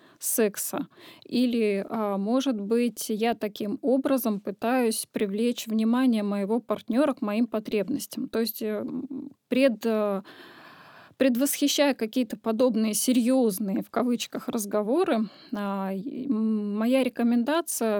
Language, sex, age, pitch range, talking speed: Russian, female, 20-39, 215-270 Hz, 90 wpm